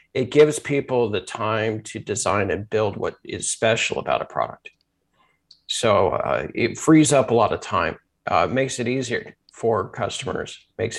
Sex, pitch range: male, 110-140 Hz